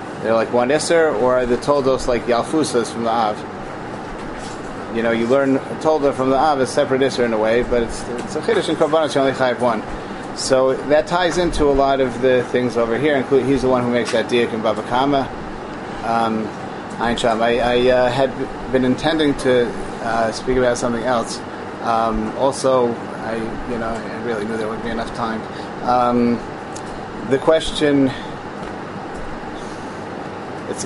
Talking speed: 175 wpm